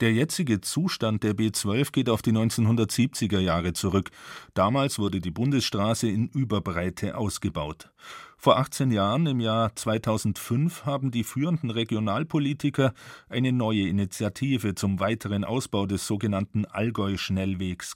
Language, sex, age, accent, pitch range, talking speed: German, male, 40-59, German, 100-130 Hz, 120 wpm